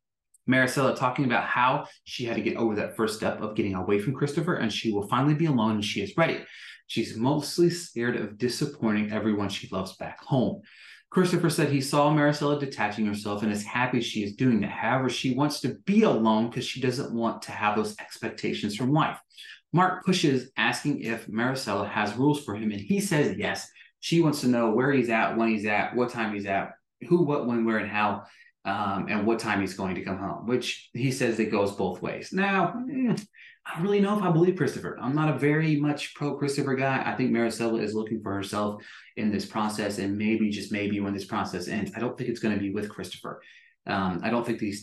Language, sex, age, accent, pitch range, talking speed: English, male, 30-49, American, 105-150 Hz, 220 wpm